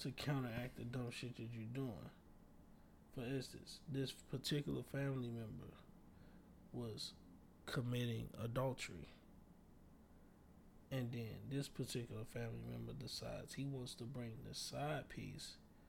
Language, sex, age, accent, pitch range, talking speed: English, male, 20-39, American, 115-140 Hz, 115 wpm